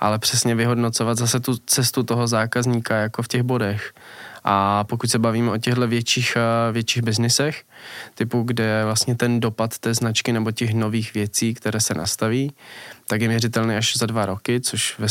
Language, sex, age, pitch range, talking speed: Czech, male, 20-39, 110-120 Hz, 175 wpm